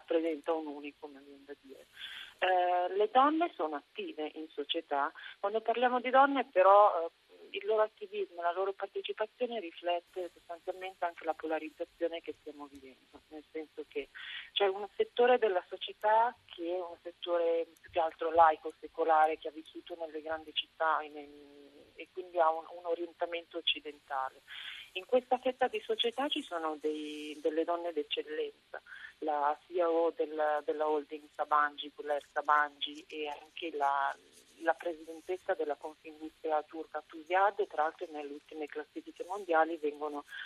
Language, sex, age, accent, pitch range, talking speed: Italian, female, 40-59, native, 150-200 Hz, 145 wpm